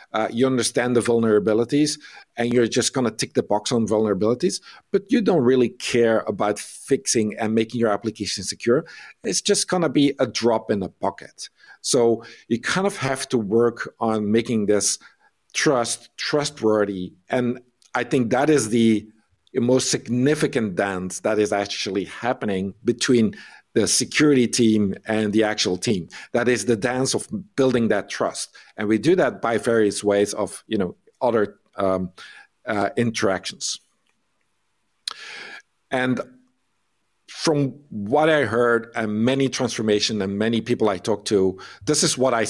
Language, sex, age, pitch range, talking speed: English, male, 50-69, 110-135 Hz, 155 wpm